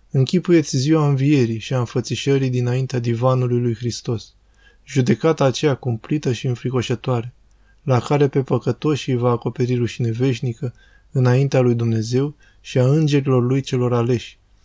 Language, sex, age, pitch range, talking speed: Romanian, male, 20-39, 120-140 Hz, 130 wpm